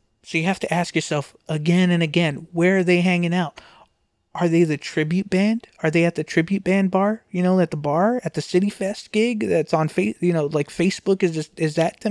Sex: male